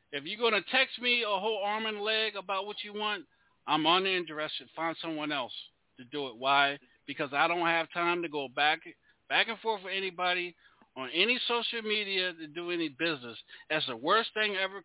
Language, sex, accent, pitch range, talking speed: English, male, American, 165-220 Hz, 200 wpm